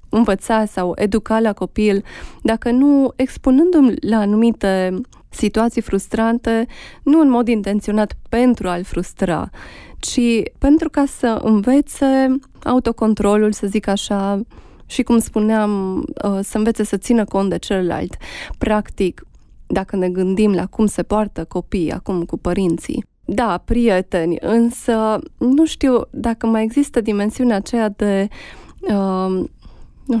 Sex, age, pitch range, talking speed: female, 20-39, 195-230 Hz, 125 wpm